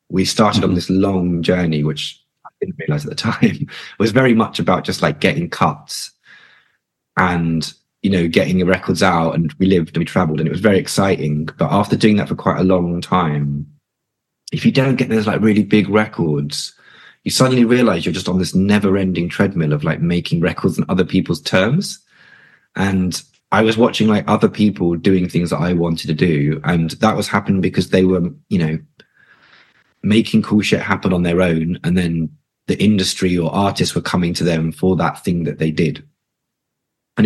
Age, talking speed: 20-39, 195 wpm